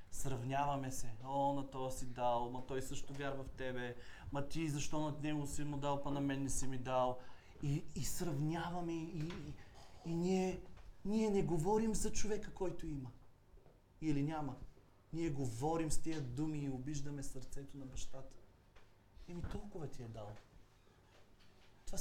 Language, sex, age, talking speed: Bulgarian, male, 30-49, 165 wpm